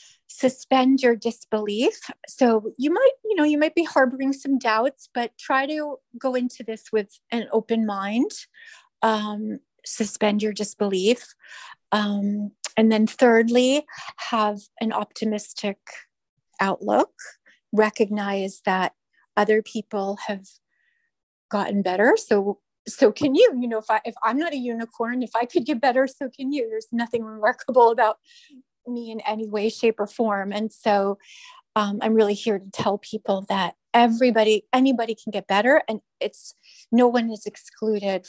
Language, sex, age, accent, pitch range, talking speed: English, female, 30-49, American, 205-250 Hz, 150 wpm